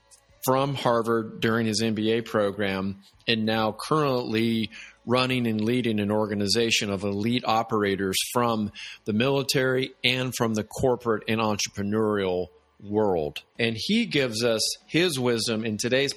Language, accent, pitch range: English, American, 105-130 Hz